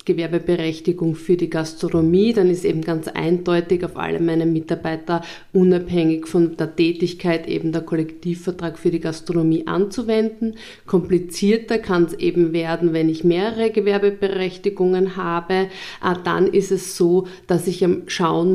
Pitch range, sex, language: 170-200 Hz, female, German